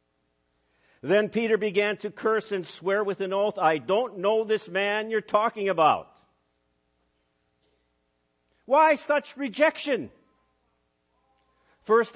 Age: 50-69